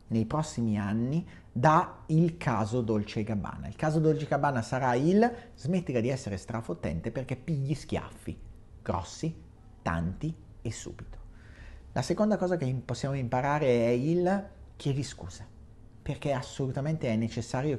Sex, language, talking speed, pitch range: male, Italian, 140 wpm, 105-145 Hz